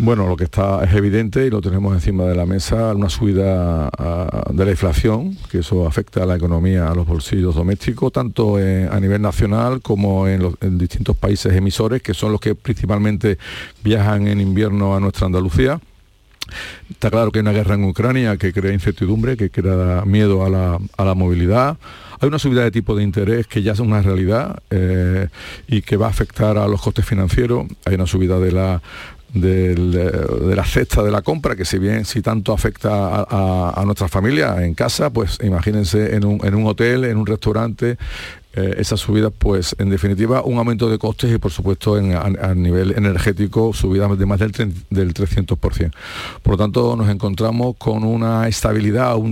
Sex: male